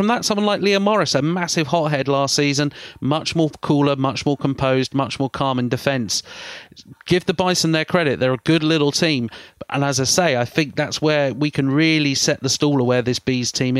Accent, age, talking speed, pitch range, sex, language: British, 30-49, 220 wpm, 130-170 Hz, male, English